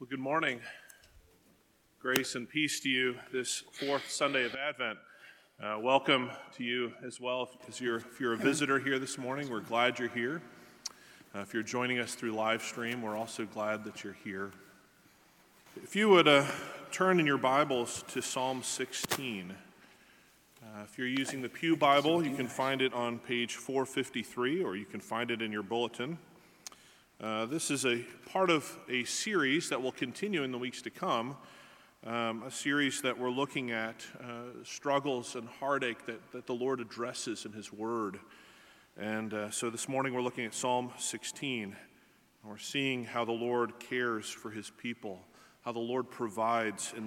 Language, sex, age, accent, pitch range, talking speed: English, male, 30-49, American, 110-135 Hz, 175 wpm